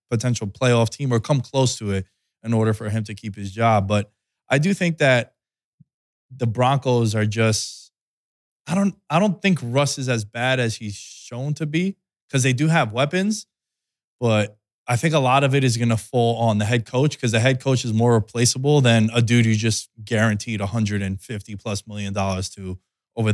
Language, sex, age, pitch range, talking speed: English, male, 20-39, 110-130 Hz, 200 wpm